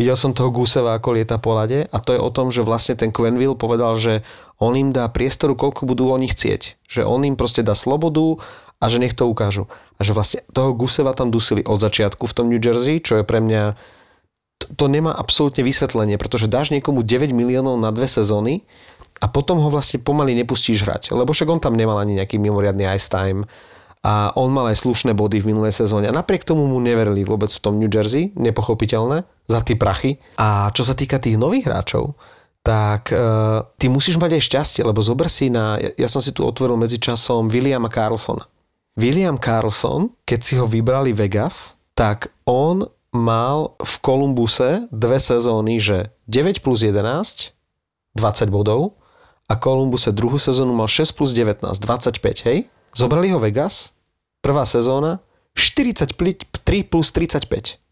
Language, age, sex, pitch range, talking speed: Slovak, 30-49, male, 110-135 Hz, 185 wpm